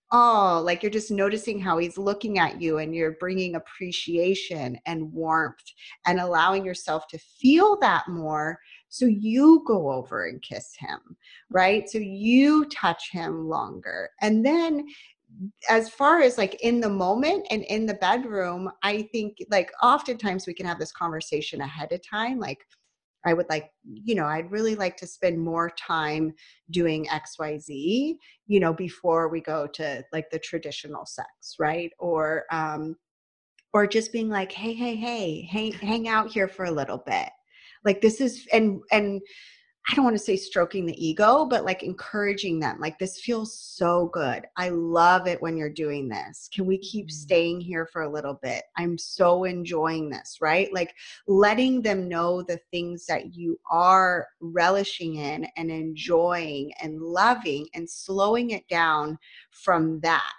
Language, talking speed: English, 165 wpm